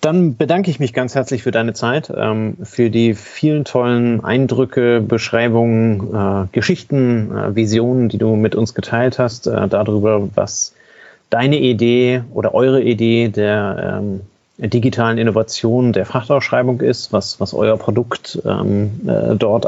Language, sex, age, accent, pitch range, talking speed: German, male, 30-49, German, 105-130 Hz, 125 wpm